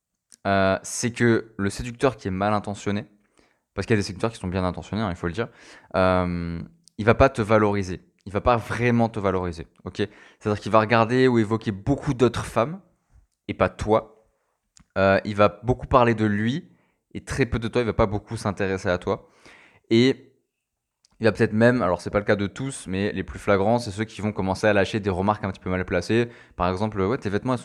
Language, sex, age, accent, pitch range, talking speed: French, male, 20-39, French, 95-115 Hz, 235 wpm